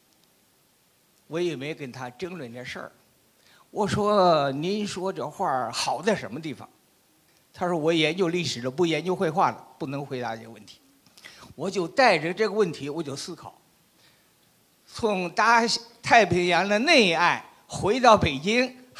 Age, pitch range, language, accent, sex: 50-69, 150-210 Hz, Chinese, native, male